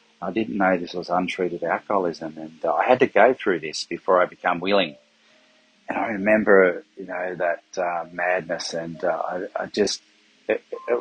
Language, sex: English, male